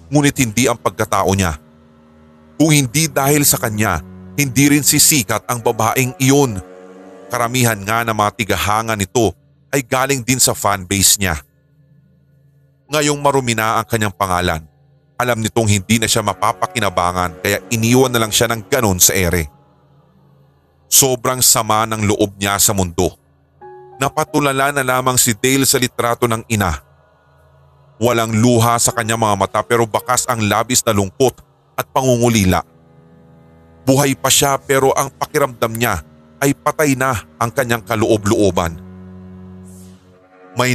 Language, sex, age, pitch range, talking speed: Filipino, male, 30-49, 95-130 Hz, 135 wpm